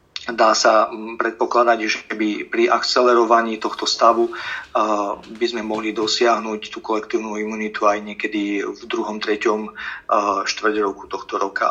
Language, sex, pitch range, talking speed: Slovak, male, 110-120 Hz, 130 wpm